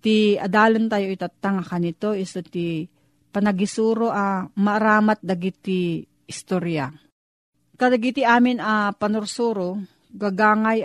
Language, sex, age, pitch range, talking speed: Filipino, female, 40-59, 175-215 Hz, 95 wpm